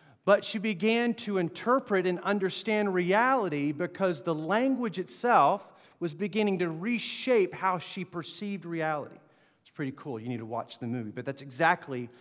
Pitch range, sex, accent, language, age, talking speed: 150-200 Hz, male, American, English, 40-59, 155 wpm